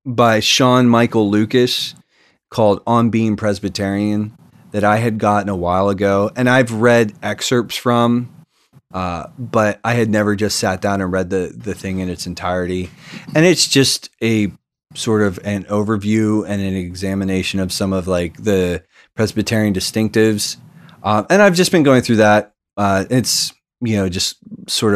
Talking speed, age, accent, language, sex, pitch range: 165 wpm, 30-49, American, English, male, 95-115 Hz